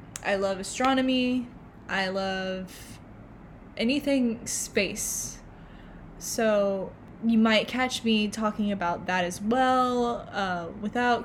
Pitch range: 200-240 Hz